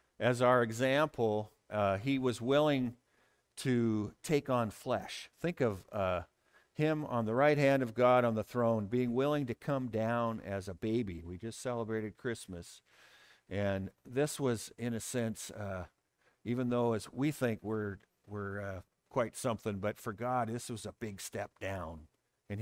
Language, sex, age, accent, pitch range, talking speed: English, male, 50-69, American, 100-125 Hz, 165 wpm